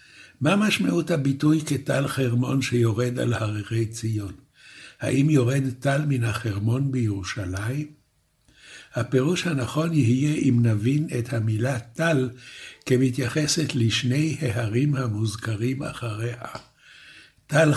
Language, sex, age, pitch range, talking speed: Hebrew, male, 60-79, 115-150 Hz, 100 wpm